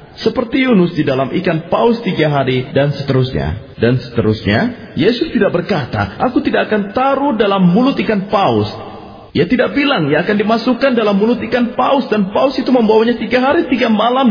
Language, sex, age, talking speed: Indonesian, male, 40-59, 170 wpm